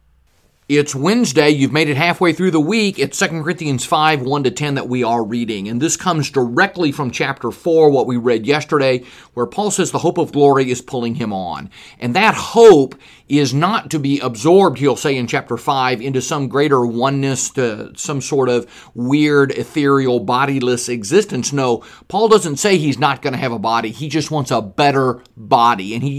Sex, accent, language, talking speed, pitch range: male, American, English, 190 wpm, 130-180 Hz